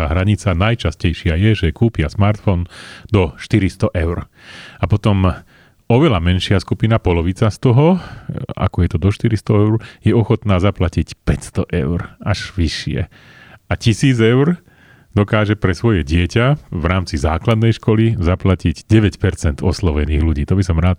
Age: 30-49